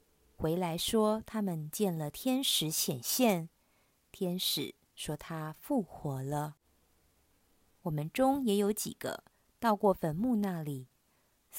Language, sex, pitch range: Chinese, female, 140-210 Hz